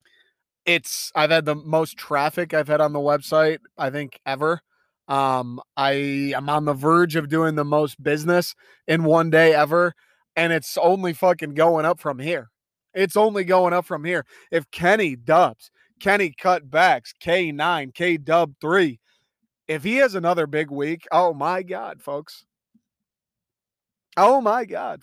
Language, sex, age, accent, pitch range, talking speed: English, male, 20-39, American, 145-175 Hz, 160 wpm